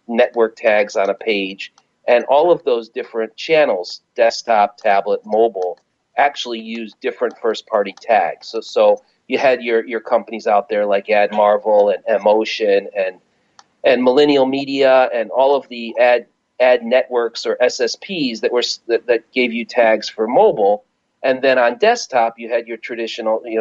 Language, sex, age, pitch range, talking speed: English, male, 40-59, 110-155 Hz, 165 wpm